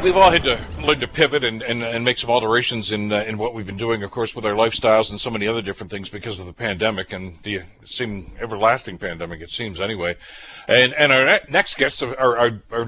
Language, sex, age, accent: English, male, 60-79, American